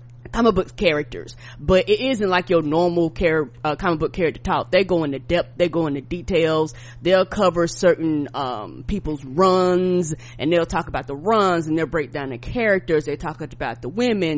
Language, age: English, 20-39